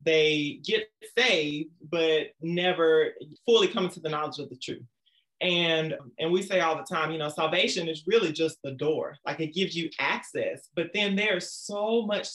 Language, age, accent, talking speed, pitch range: English, 30-49, American, 185 wpm, 155-195 Hz